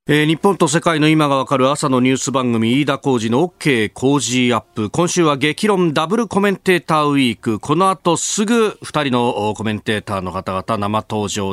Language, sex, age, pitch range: Japanese, male, 40-59, 115-165 Hz